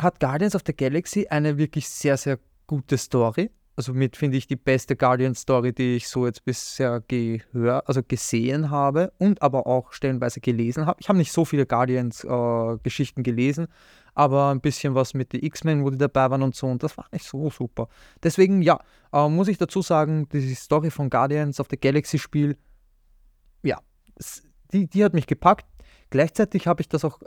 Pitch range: 125-160 Hz